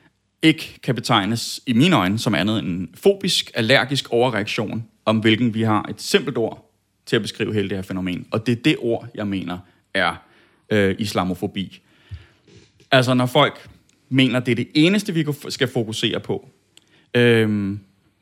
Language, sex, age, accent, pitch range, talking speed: Danish, male, 30-49, native, 105-145 Hz, 165 wpm